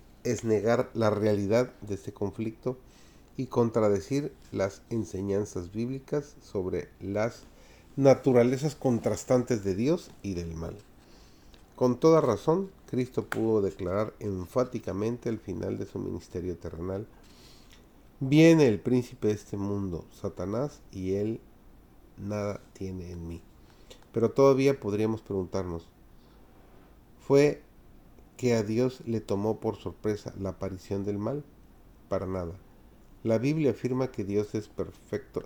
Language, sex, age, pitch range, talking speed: Spanish, male, 40-59, 95-125 Hz, 120 wpm